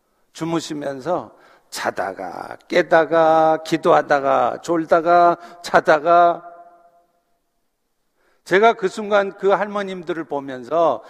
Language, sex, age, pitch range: Korean, male, 50-69, 165-210 Hz